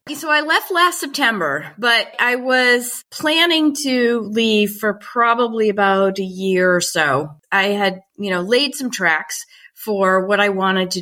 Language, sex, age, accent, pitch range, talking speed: English, female, 30-49, American, 175-230 Hz, 165 wpm